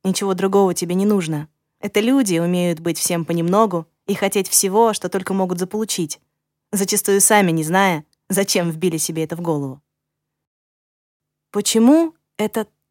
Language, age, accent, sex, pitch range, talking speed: Russian, 20-39, native, female, 165-220 Hz, 140 wpm